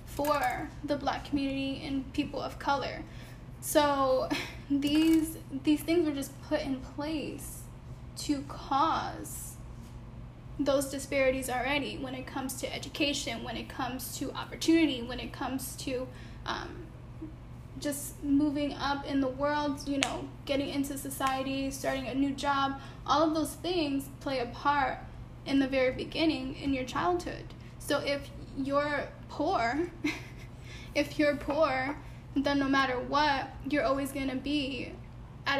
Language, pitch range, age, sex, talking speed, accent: English, 265-290 Hz, 10-29, female, 140 wpm, American